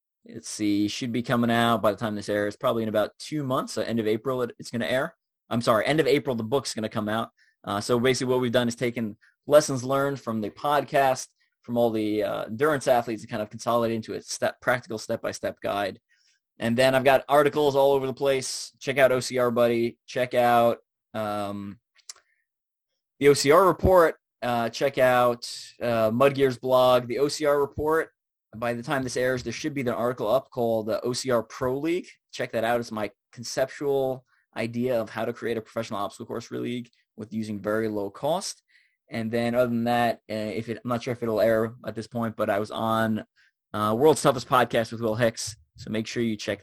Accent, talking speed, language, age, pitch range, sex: American, 210 wpm, English, 20-39, 110-125 Hz, male